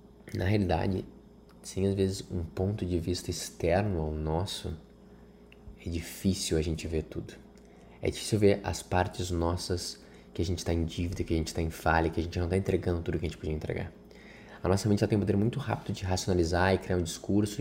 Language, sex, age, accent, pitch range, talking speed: Portuguese, male, 20-39, Brazilian, 85-95 Hz, 215 wpm